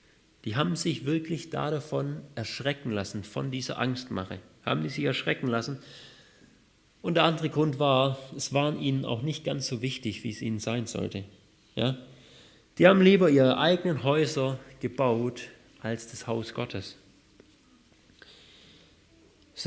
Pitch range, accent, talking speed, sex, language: 115-150 Hz, German, 135 wpm, male, German